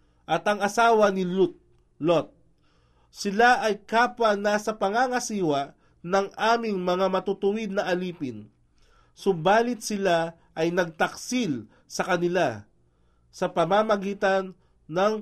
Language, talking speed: Filipino, 105 wpm